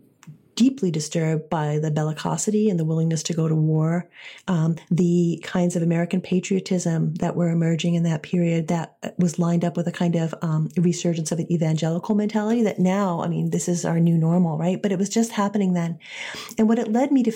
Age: 30-49